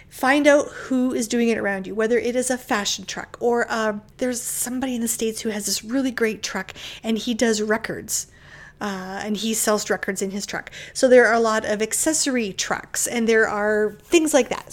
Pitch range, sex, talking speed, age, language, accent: 210-255 Hz, female, 215 wpm, 30-49, English, American